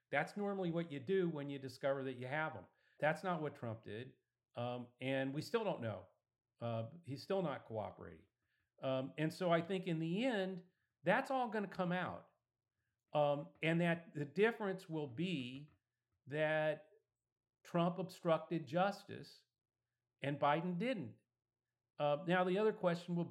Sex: male